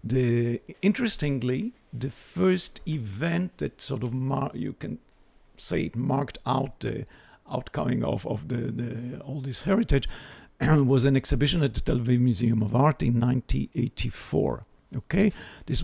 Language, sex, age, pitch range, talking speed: English, male, 60-79, 115-145 Hz, 145 wpm